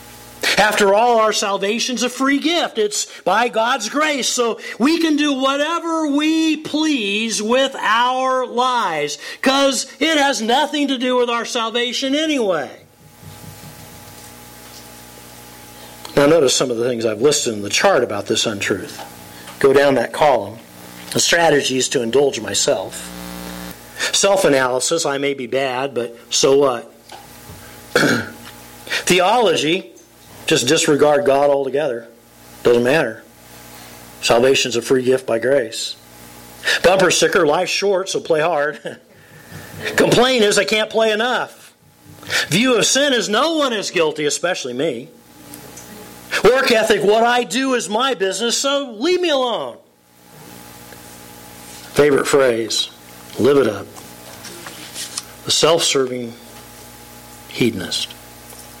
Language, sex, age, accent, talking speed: English, male, 50-69, American, 125 wpm